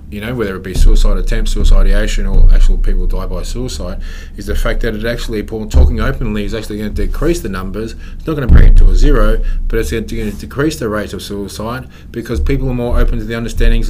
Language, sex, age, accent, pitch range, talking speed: English, male, 20-39, Australian, 75-110 Hz, 240 wpm